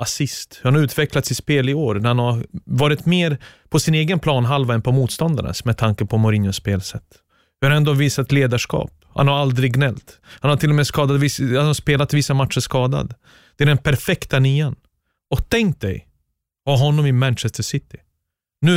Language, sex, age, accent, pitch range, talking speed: Swedish, male, 30-49, native, 120-150 Hz, 185 wpm